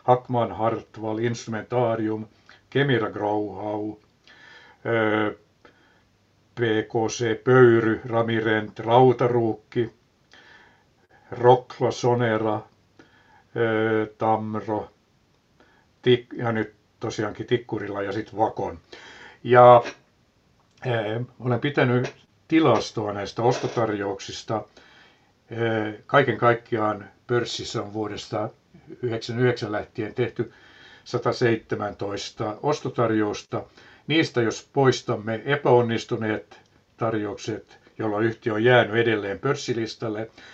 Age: 60-79